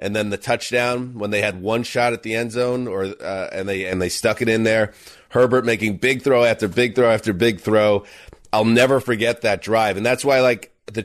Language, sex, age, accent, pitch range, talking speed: English, male, 30-49, American, 105-125 Hz, 235 wpm